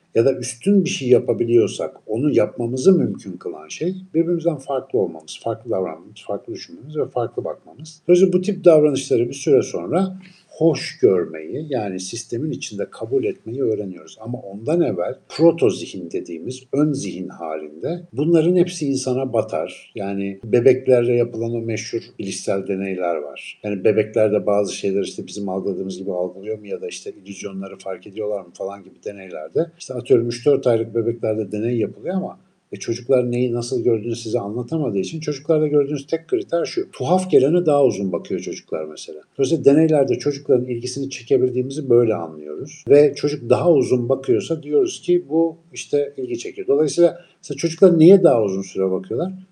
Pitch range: 110-170 Hz